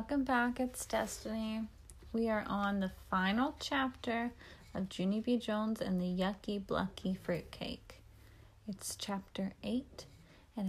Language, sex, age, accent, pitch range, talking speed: English, female, 30-49, American, 195-310 Hz, 135 wpm